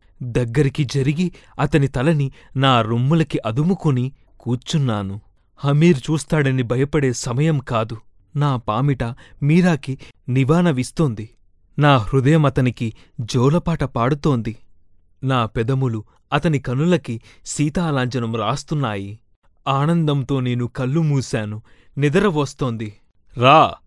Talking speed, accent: 90 wpm, native